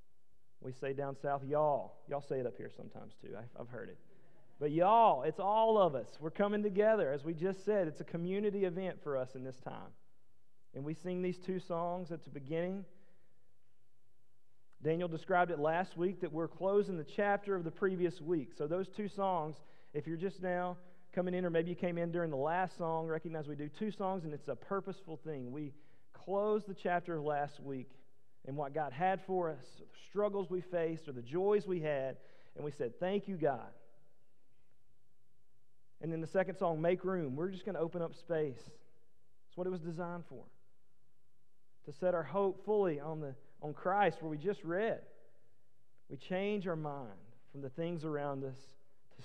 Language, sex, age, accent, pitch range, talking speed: English, male, 40-59, American, 140-180 Hz, 195 wpm